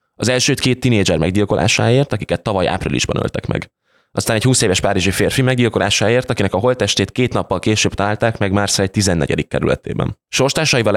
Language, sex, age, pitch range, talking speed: Hungarian, male, 20-39, 95-125 Hz, 160 wpm